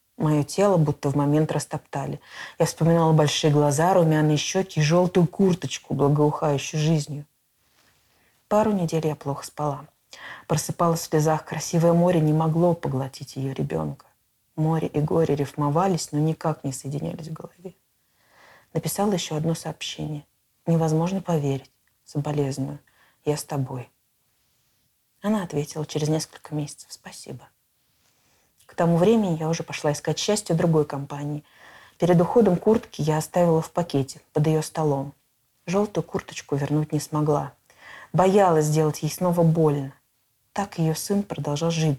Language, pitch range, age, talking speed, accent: Russian, 150-175 Hz, 20-39, 135 wpm, native